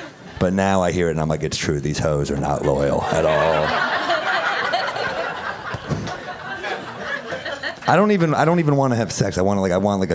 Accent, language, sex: American, English, male